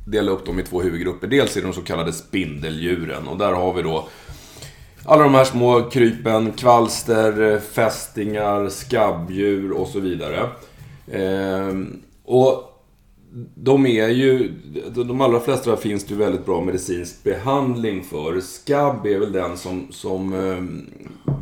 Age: 30-49